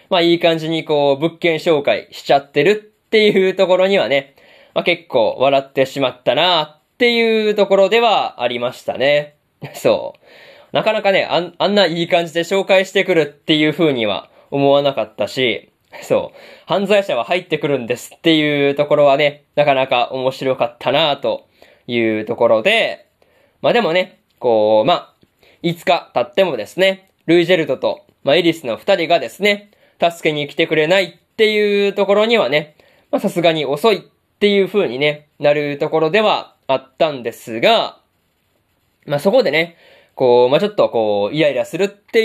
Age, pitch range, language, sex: 20-39, 145-200 Hz, Japanese, male